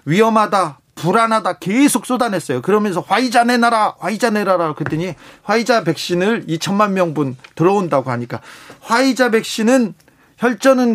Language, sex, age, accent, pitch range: Korean, male, 40-59, native, 165-235 Hz